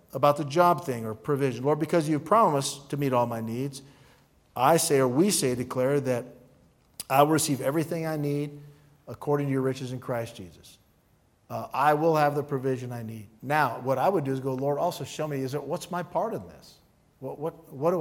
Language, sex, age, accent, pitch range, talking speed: English, male, 50-69, American, 130-175 Hz, 215 wpm